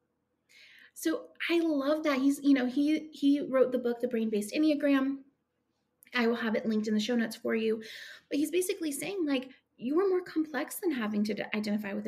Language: English